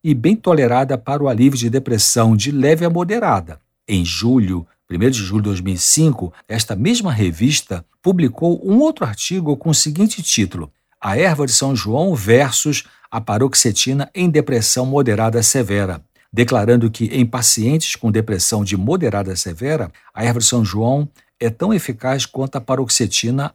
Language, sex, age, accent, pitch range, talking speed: Portuguese, male, 60-79, Brazilian, 100-145 Hz, 160 wpm